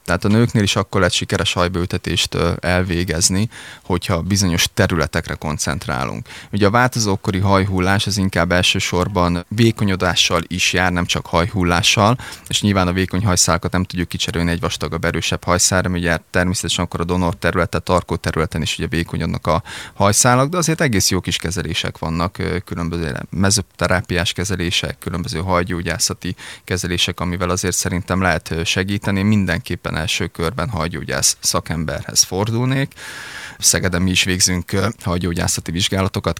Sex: male